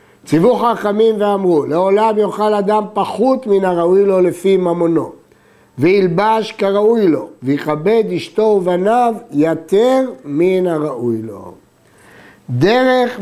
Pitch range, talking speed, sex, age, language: 175-215 Hz, 105 wpm, male, 60-79, Hebrew